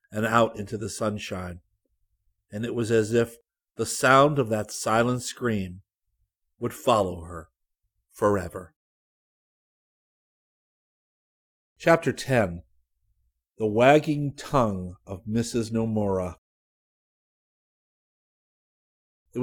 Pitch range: 100-120 Hz